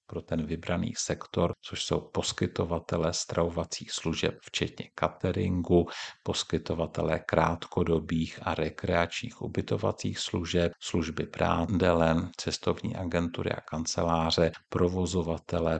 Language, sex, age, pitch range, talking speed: Czech, male, 50-69, 80-90 Hz, 90 wpm